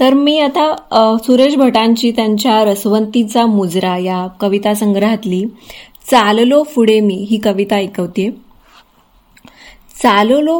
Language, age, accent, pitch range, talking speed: Marathi, 20-39, native, 200-250 Hz, 110 wpm